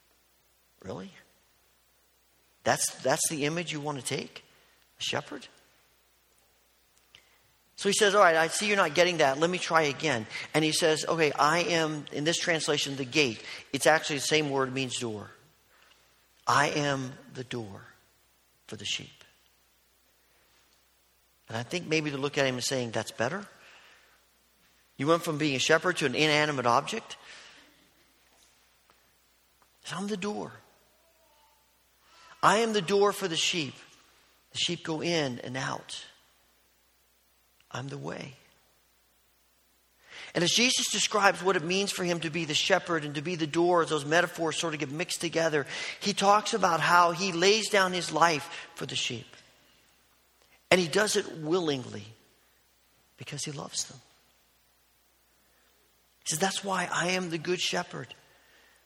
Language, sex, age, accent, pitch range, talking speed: English, male, 50-69, American, 125-175 Hz, 150 wpm